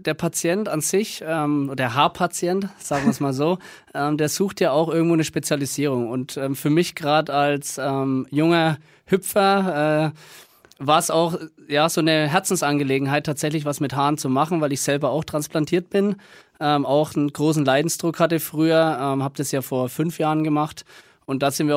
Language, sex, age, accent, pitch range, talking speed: German, male, 20-39, German, 135-160 Hz, 180 wpm